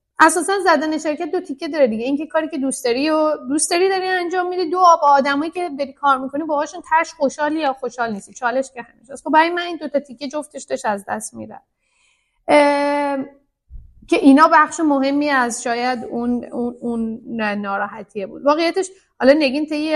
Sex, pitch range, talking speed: female, 215-285 Hz, 185 wpm